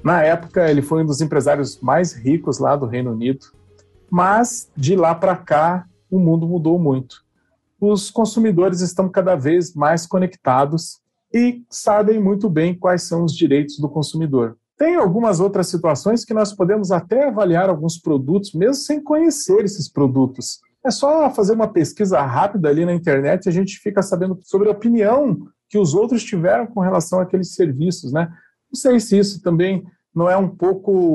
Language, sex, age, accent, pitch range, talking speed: Portuguese, male, 40-59, Brazilian, 155-205 Hz, 175 wpm